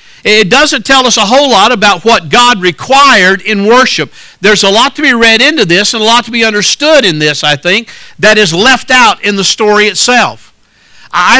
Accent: American